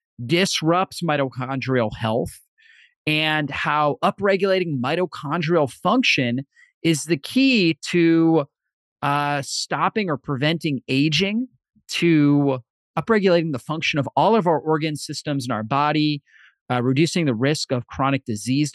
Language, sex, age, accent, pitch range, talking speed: English, male, 30-49, American, 130-170 Hz, 120 wpm